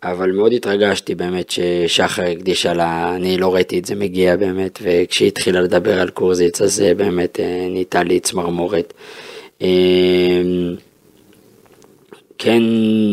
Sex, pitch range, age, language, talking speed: male, 90-105 Hz, 20-39, Hebrew, 115 wpm